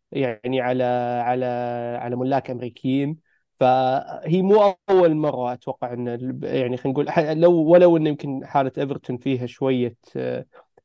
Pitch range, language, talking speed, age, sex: 125-140 Hz, Arabic, 125 wpm, 20-39, male